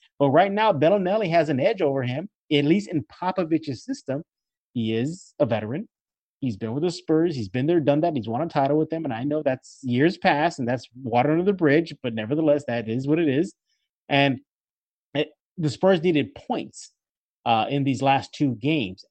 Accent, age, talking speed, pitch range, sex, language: American, 30-49, 205 wpm, 125-160 Hz, male, English